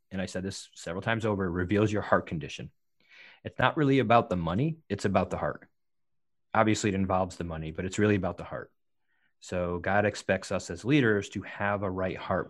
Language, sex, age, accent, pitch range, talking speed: English, male, 30-49, American, 95-110 Hz, 205 wpm